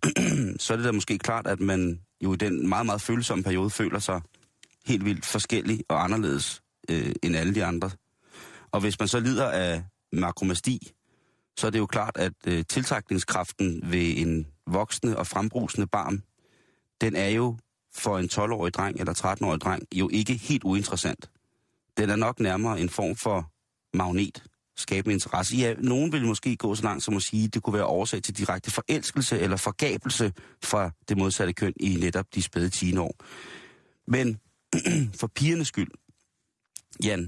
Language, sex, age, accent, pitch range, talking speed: Danish, male, 30-49, native, 95-115 Hz, 170 wpm